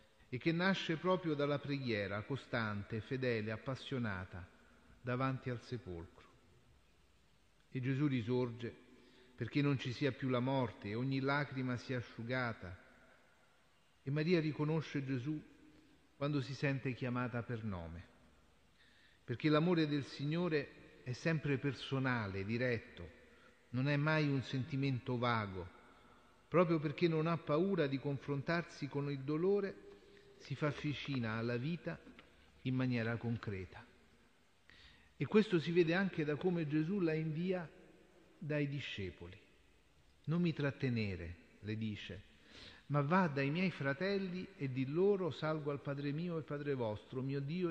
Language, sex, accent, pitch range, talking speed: Italian, male, native, 115-155 Hz, 130 wpm